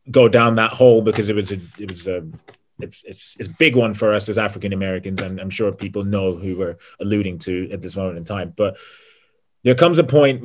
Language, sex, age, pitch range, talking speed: English, male, 30-49, 95-120 Hz, 235 wpm